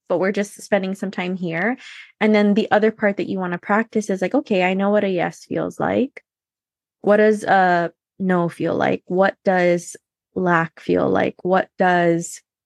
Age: 20-39